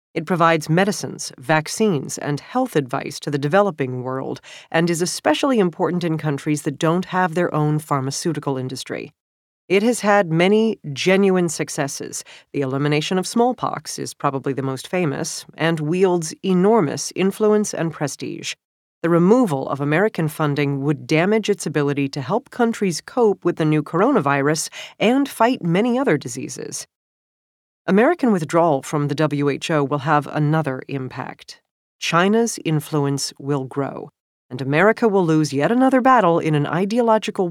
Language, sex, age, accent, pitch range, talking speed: English, female, 40-59, American, 145-195 Hz, 145 wpm